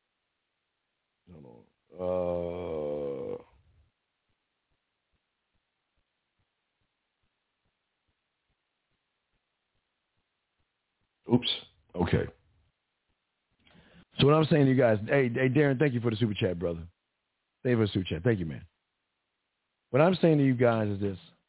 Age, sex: 50-69, male